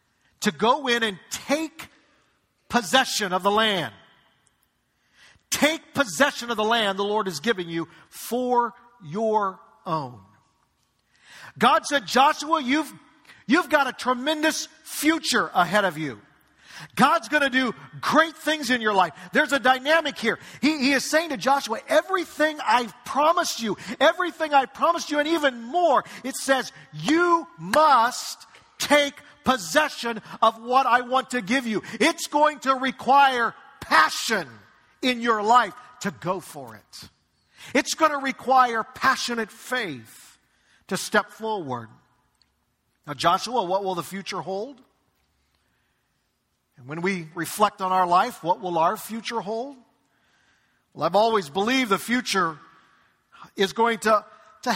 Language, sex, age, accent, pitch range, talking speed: English, male, 50-69, American, 195-280 Hz, 140 wpm